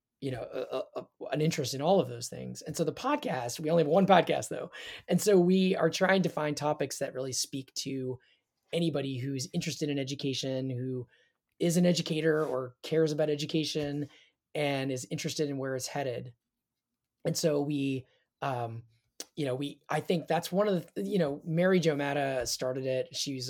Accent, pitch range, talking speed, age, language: American, 130-160 Hz, 190 wpm, 20-39, English